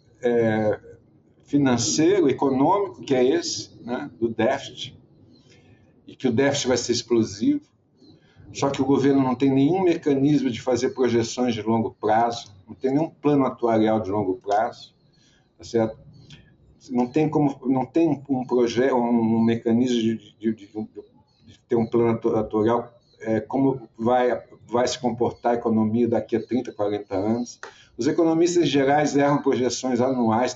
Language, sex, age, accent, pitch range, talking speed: Portuguese, male, 50-69, Brazilian, 115-135 Hz, 150 wpm